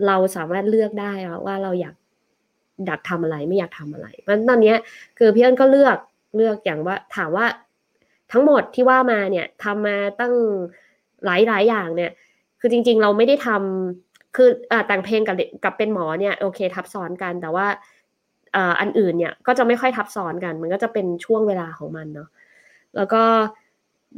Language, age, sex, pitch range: Thai, 20-39, female, 180-230 Hz